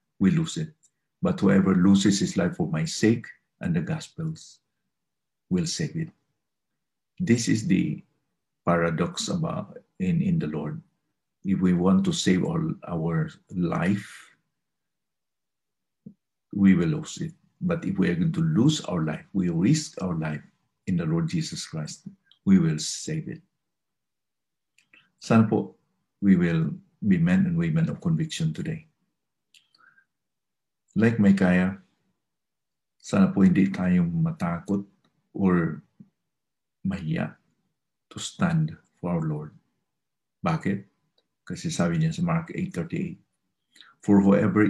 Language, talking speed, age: English, 125 wpm, 50-69